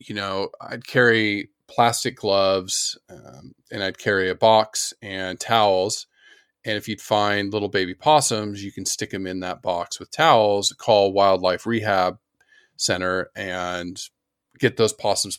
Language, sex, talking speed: English, male, 150 wpm